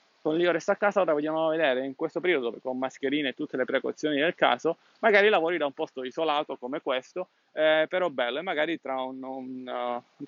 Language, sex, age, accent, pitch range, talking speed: Italian, male, 20-39, native, 130-170 Hz, 220 wpm